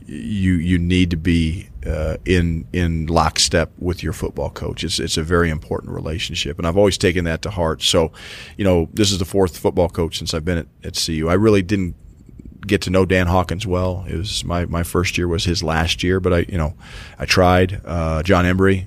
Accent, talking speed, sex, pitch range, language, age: American, 220 wpm, male, 85-95 Hz, English, 40-59